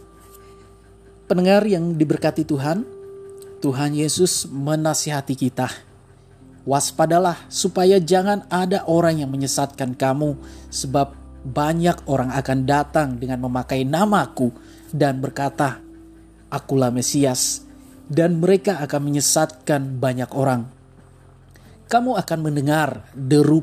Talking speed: 100 wpm